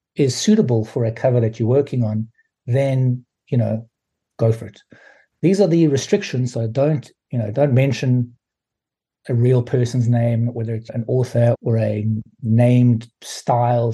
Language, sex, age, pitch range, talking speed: English, male, 60-79, 115-145 Hz, 160 wpm